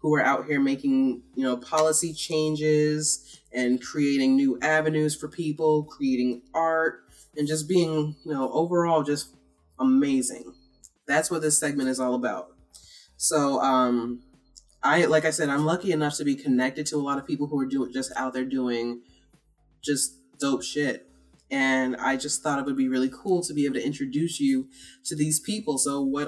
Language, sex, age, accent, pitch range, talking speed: English, female, 20-39, American, 130-170 Hz, 180 wpm